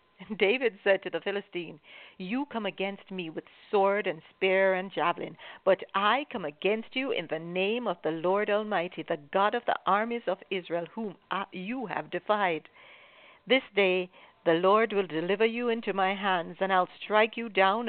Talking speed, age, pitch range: 180 wpm, 60-79, 180-225 Hz